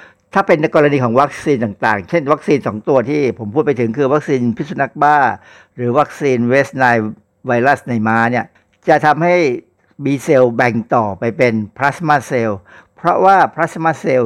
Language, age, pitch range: Thai, 60-79, 120-160 Hz